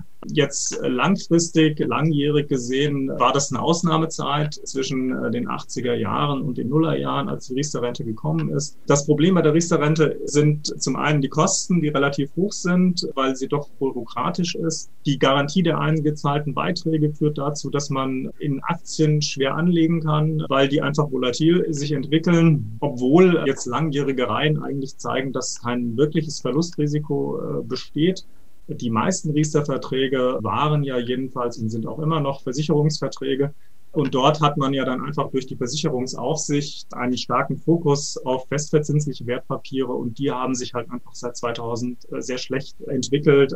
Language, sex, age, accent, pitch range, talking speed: German, male, 30-49, German, 125-155 Hz, 150 wpm